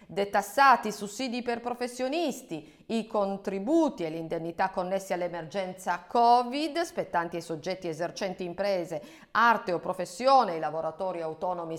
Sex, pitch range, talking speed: female, 175-270 Hz, 115 wpm